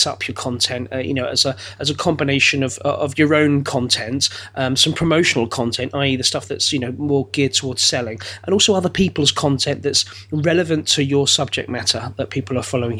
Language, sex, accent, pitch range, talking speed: English, male, British, 125-170 Hz, 210 wpm